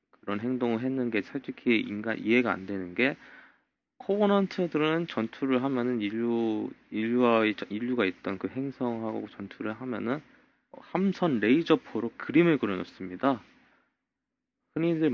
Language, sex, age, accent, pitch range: Korean, male, 20-39, native, 105-155 Hz